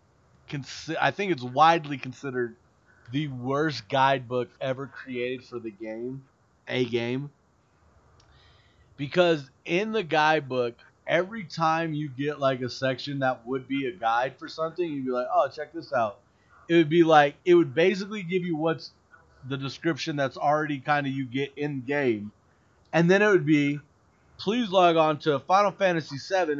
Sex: male